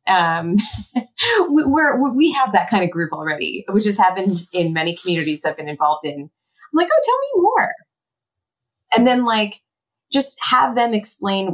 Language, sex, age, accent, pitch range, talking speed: English, female, 30-49, American, 155-205 Hz, 165 wpm